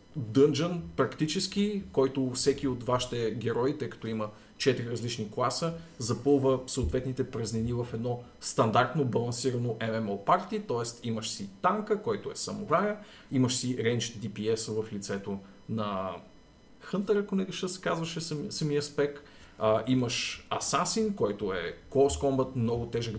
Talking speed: 135 wpm